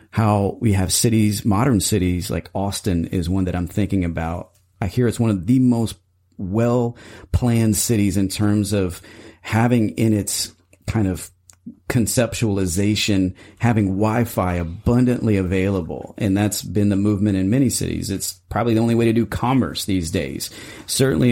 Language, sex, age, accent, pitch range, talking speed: English, male, 40-59, American, 95-110 Hz, 155 wpm